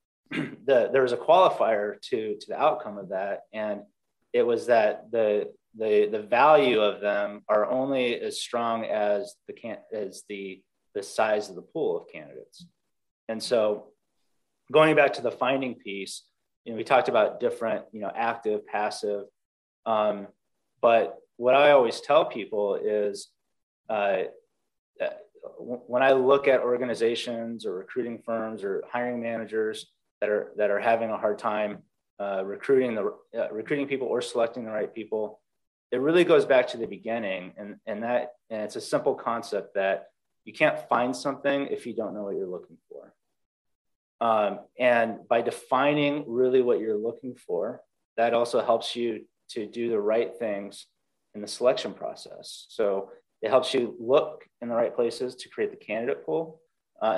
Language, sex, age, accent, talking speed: English, male, 30-49, American, 165 wpm